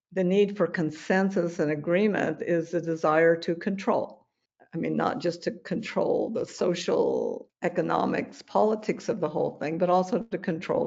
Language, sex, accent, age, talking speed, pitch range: English, female, American, 60-79, 160 wpm, 175-240 Hz